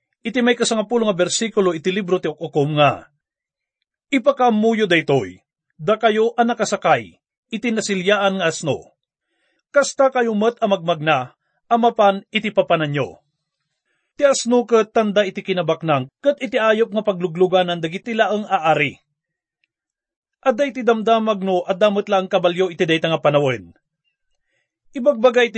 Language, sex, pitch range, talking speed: English, male, 170-230 Hz, 125 wpm